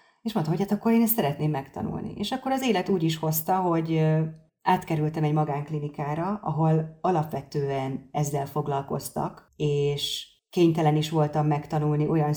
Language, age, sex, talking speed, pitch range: Hungarian, 30-49, female, 145 wpm, 150-175 Hz